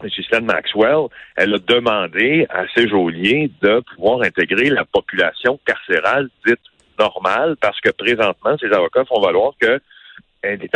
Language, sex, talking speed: French, male, 140 wpm